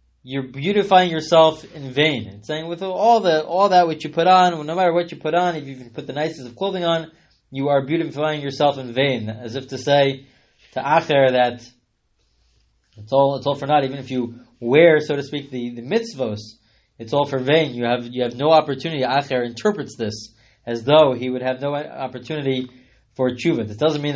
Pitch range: 130-170 Hz